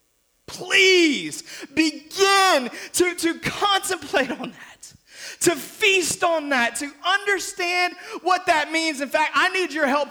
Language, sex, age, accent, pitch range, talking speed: English, male, 30-49, American, 215-310 Hz, 130 wpm